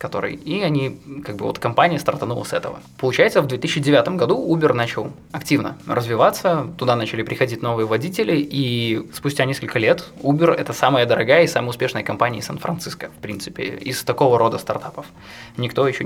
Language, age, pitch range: Russian, 20-39, 115-145 Hz